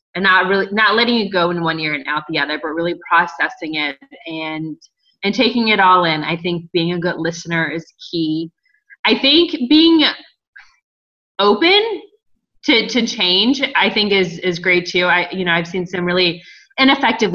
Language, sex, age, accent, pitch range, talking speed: English, female, 20-39, American, 165-195 Hz, 185 wpm